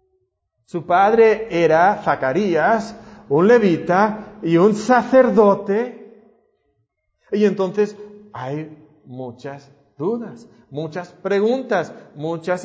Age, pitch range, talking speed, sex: 40-59, 160-220 Hz, 80 wpm, male